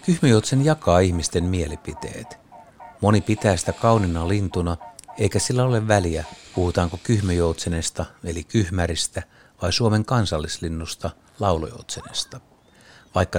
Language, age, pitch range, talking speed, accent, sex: Finnish, 60-79, 85-105 Hz, 100 wpm, native, male